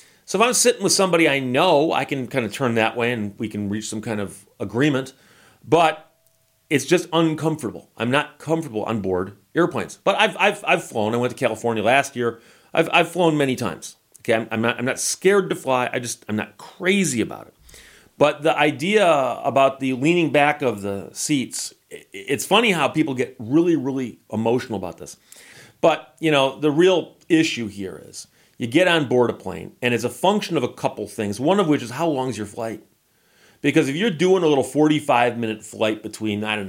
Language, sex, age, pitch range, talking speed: English, male, 40-59, 110-160 Hz, 205 wpm